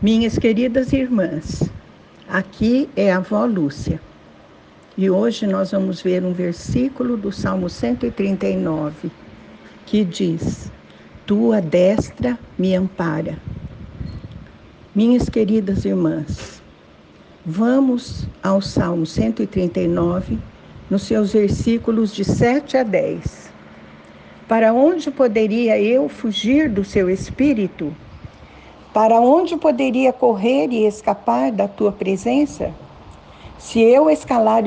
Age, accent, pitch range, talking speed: 60-79, Brazilian, 185-240 Hz, 100 wpm